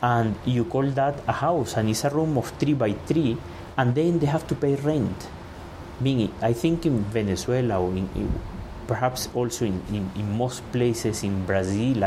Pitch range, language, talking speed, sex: 95-125 Hz, English, 170 wpm, male